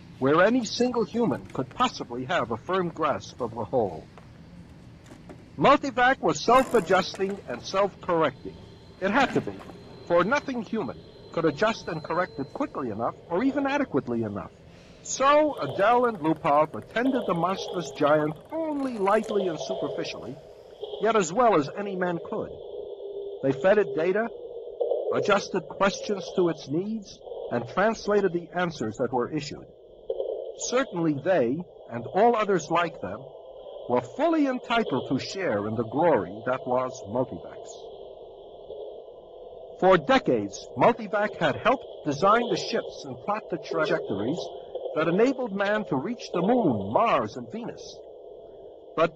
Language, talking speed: English, 135 wpm